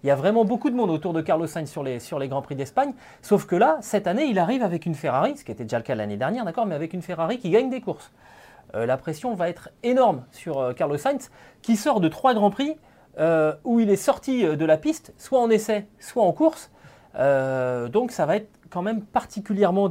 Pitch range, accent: 145-210 Hz, French